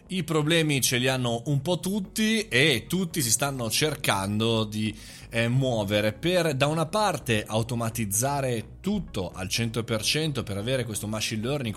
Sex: male